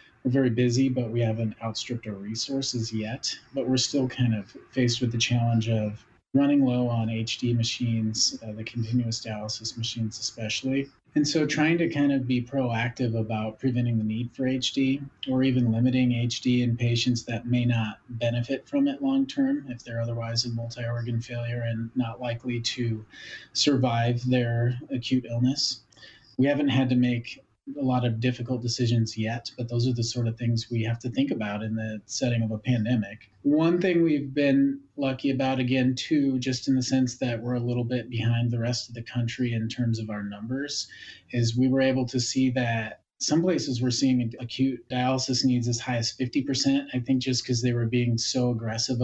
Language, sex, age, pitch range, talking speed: English, male, 30-49, 115-130 Hz, 190 wpm